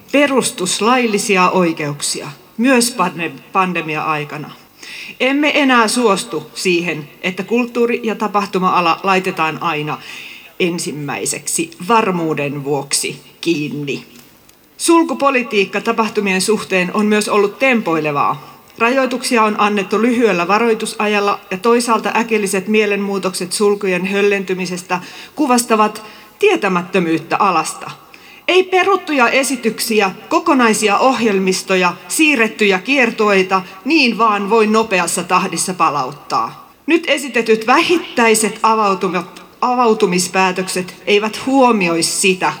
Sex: female